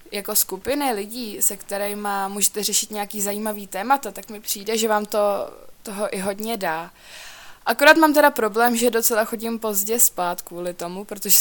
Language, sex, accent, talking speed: Czech, female, native, 170 wpm